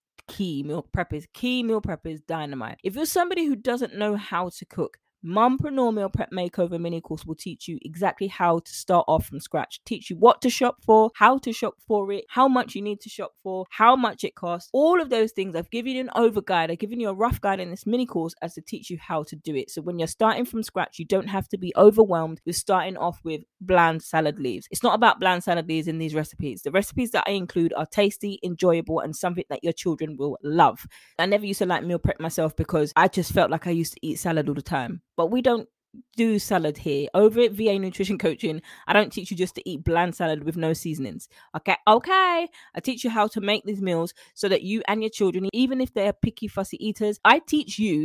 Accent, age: British, 20-39